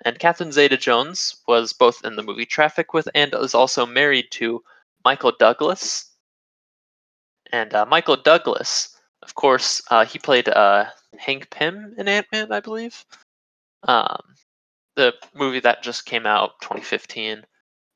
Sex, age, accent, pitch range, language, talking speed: male, 20-39, American, 115-160 Hz, English, 135 wpm